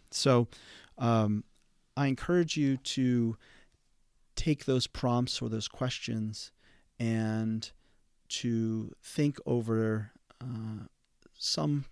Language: English